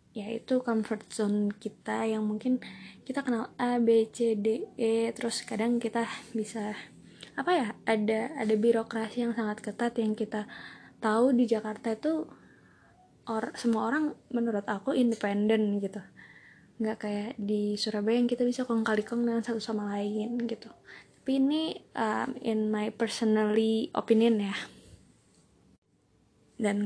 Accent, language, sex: native, Indonesian, female